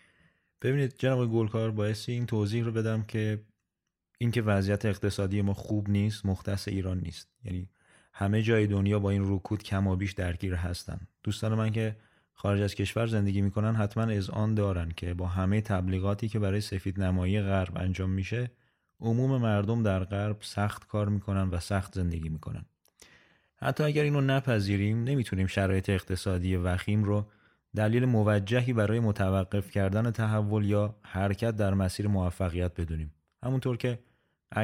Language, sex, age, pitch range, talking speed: Persian, male, 30-49, 95-110 Hz, 150 wpm